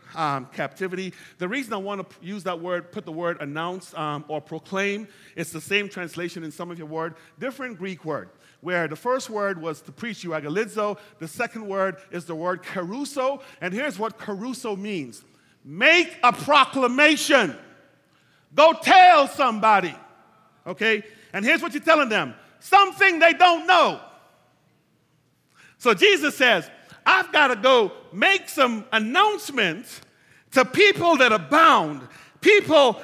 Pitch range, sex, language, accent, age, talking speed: 190-320 Hz, male, English, American, 40-59, 150 wpm